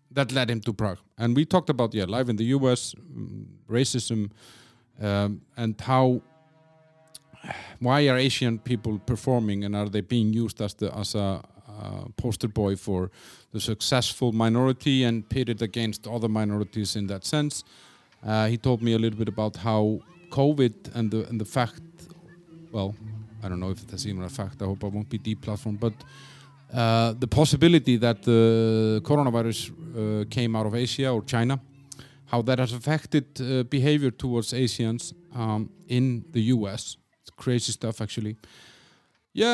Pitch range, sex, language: 110-140 Hz, male, English